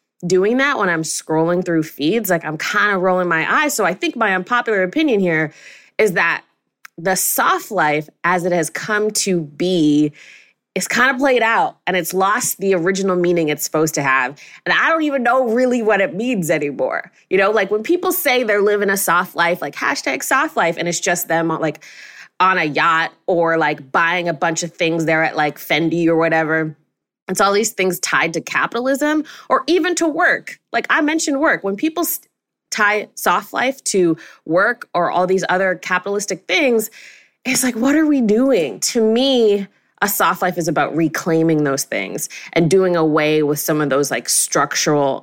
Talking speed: 195 wpm